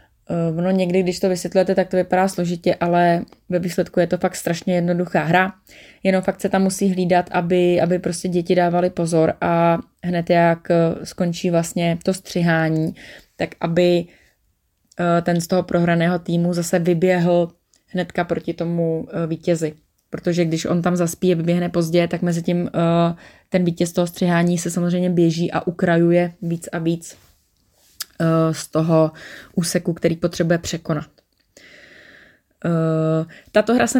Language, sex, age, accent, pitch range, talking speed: Czech, female, 20-39, native, 170-185 Hz, 145 wpm